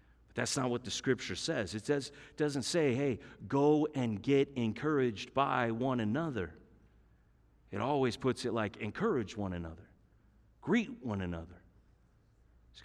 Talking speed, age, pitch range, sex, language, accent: 135 wpm, 40-59, 105-145 Hz, male, English, American